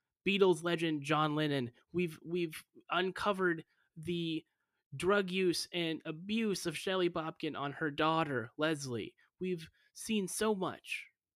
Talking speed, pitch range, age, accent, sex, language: 120 wpm, 145-195 Hz, 30-49, American, male, English